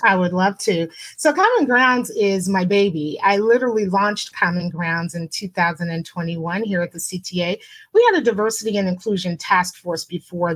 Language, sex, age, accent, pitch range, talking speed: English, female, 30-49, American, 175-225 Hz, 170 wpm